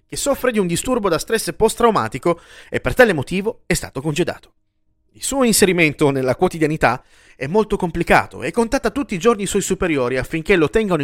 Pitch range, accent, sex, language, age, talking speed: 130-195 Hz, native, male, Italian, 30-49, 185 wpm